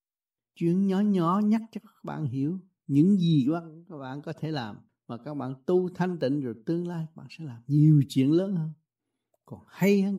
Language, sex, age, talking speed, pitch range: Vietnamese, male, 60-79, 210 wpm, 125-175 Hz